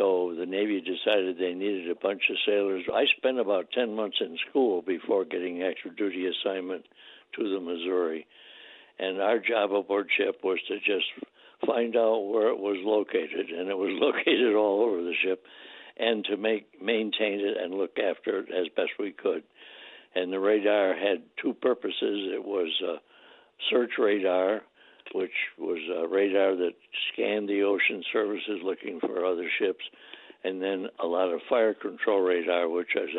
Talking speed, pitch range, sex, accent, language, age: 170 wpm, 90-130 Hz, male, American, English, 60-79